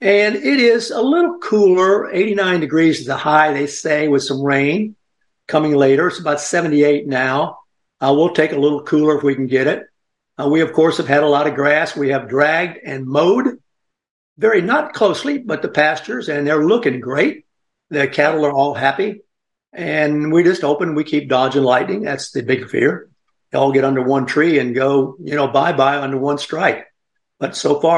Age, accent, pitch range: 60-79, American, 140-170 Hz